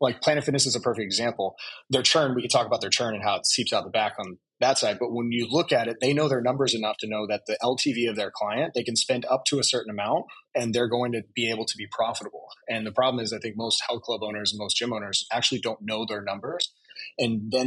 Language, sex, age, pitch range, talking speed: English, male, 30-49, 110-135 Hz, 280 wpm